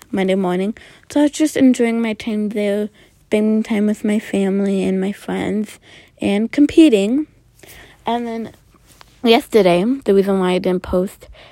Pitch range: 195-245 Hz